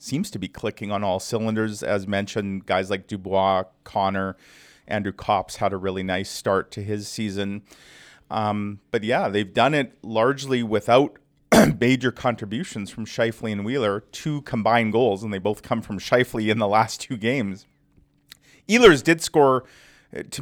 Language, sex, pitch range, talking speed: English, male, 100-120 Hz, 160 wpm